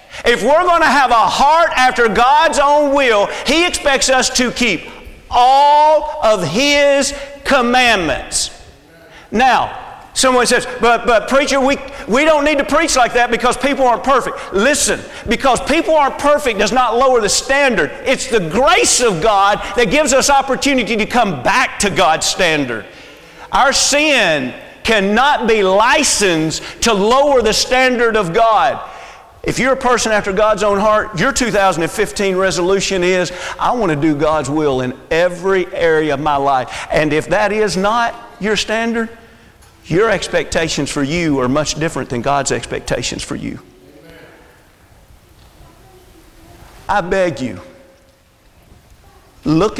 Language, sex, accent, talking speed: English, male, American, 145 wpm